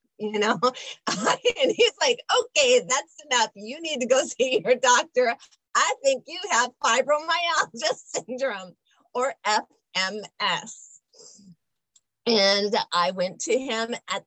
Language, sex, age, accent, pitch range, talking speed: English, female, 30-49, American, 185-250 Hz, 120 wpm